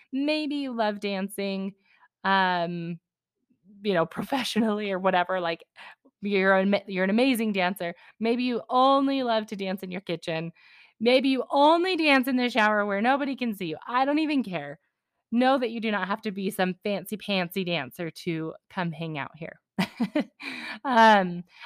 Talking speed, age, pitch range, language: 165 wpm, 20-39, 185-240 Hz, English